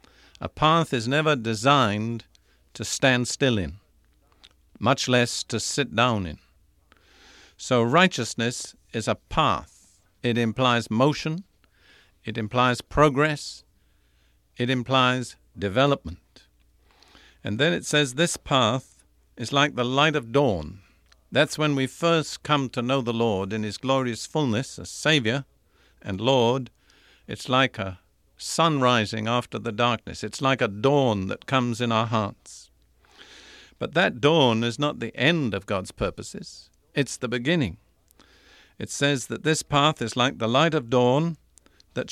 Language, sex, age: English, male, 50-69